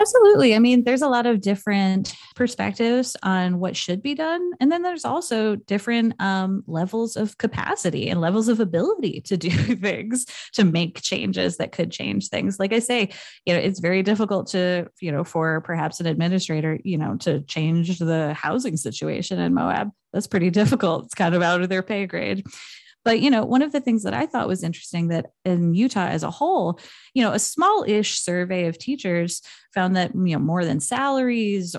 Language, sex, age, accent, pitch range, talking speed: English, female, 20-39, American, 170-225 Hz, 195 wpm